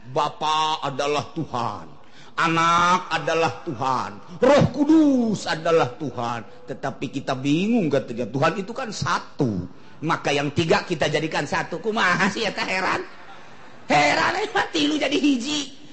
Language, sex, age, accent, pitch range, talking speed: Indonesian, male, 40-59, native, 140-230 Hz, 115 wpm